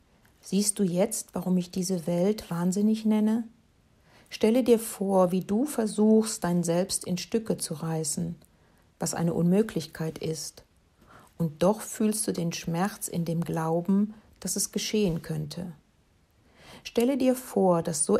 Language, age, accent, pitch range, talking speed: German, 60-79, German, 170-210 Hz, 140 wpm